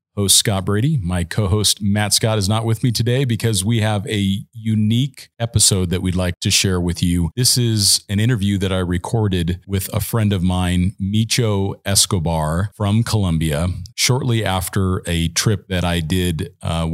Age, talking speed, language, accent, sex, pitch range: 40-59, 175 wpm, English, American, male, 90-115 Hz